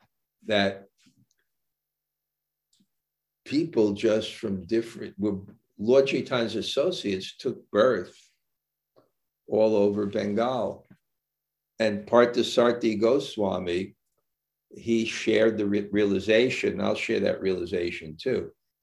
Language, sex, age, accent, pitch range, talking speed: English, male, 60-79, American, 95-110 Hz, 85 wpm